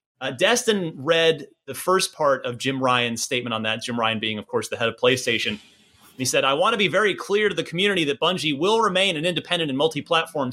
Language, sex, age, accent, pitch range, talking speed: English, male, 30-49, American, 135-195 Hz, 230 wpm